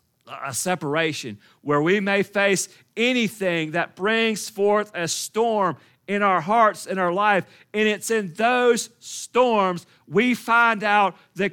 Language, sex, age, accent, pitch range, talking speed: English, male, 40-59, American, 160-215 Hz, 140 wpm